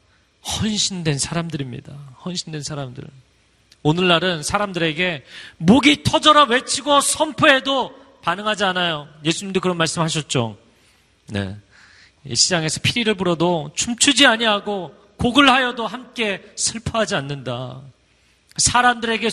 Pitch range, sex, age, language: 150-245 Hz, male, 40-59, Korean